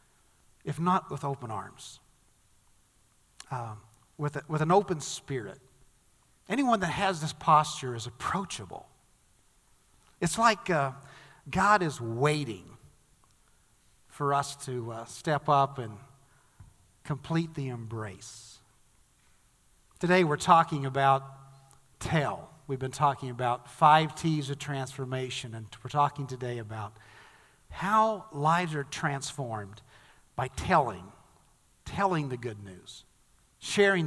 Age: 50-69